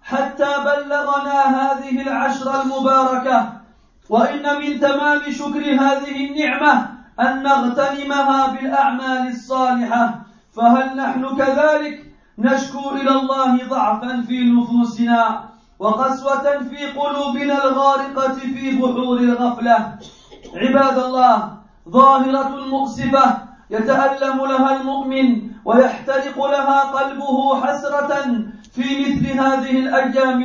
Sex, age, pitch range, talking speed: male, 40-59, 255-275 Hz, 90 wpm